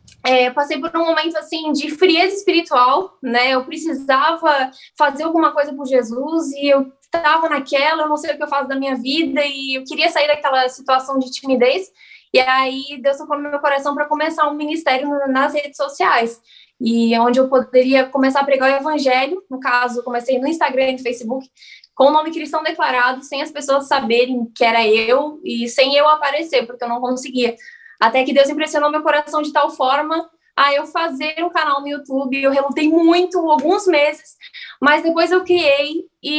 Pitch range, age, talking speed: 260-300 Hz, 10-29, 195 wpm